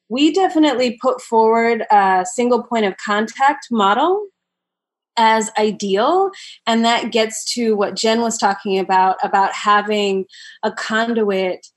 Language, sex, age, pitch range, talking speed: English, female, 20-39, 195-230 Hz, 125 wpm